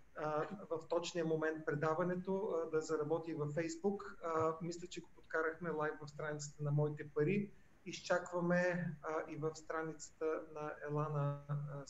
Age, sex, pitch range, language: 40-59, male, 155-190 Hz, Bulgarian